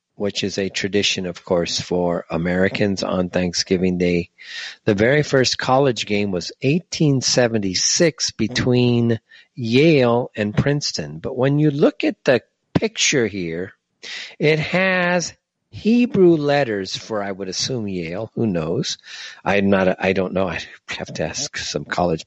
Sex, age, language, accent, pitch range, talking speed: male, 50-69, English, American, 95-140 Hz, 135 wpm